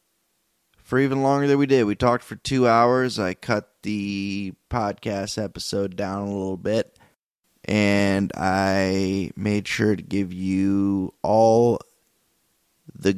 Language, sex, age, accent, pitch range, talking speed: English, male, 20-39, American, 95-115 Hz, 130 wpm